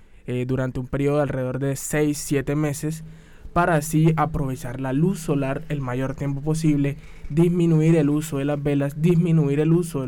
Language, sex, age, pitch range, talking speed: Spanish, male, 20-39, 135-160 Hz, 175 wpm